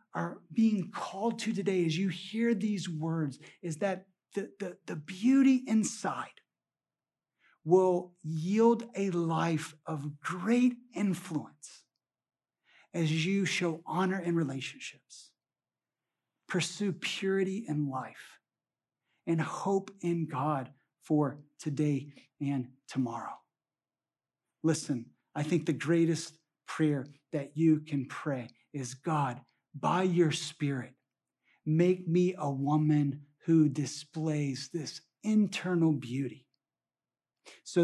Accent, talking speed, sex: American, 105 wpm, male